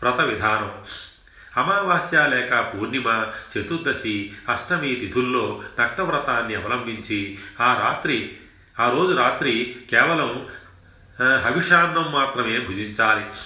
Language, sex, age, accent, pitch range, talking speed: Telugu, male, 40-59, native, 105-125 Hz, 90 wpm